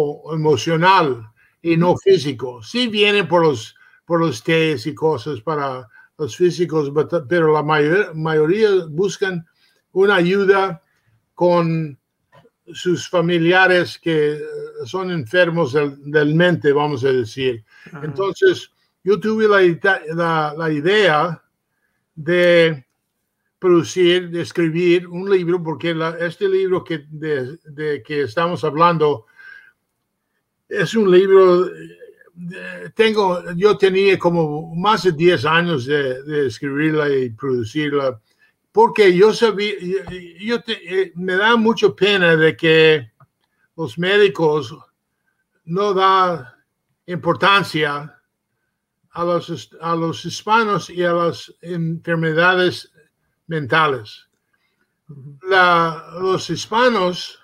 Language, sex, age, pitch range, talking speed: English, male, 60-79, 155-190 Hz, 110 wpm